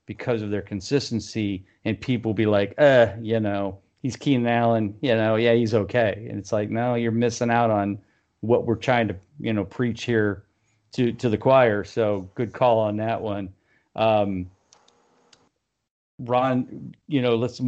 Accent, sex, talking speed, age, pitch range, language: American, male, 175 wpm, 40-59, 110-130 Hz, English